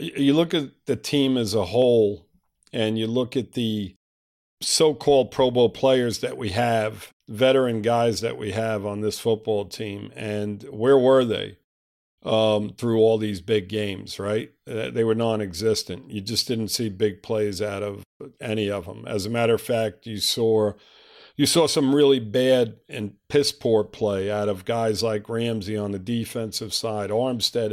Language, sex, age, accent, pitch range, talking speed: English, male, 50-69, American, 105-125 Hz, 175 wpm